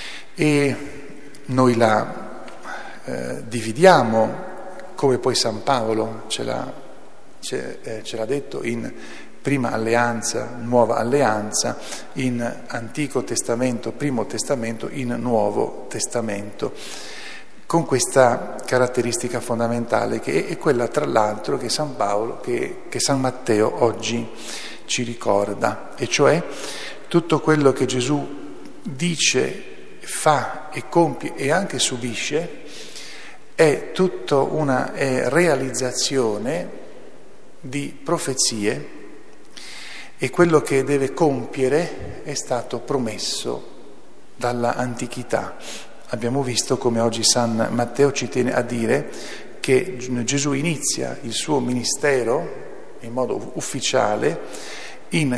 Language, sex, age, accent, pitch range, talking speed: Italian, male, 50-69, native, 115-145 Hz, 100 wpm